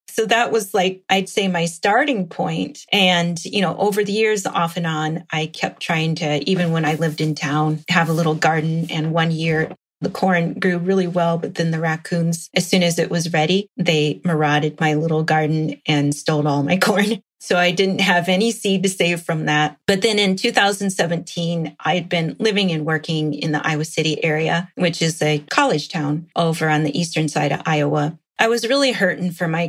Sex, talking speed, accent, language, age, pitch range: female, 205 wpm, American, English, 30-49, 155-185 Hz